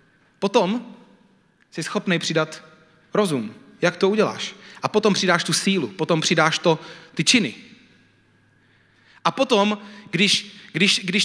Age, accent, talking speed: 30-49, native, 125 wpm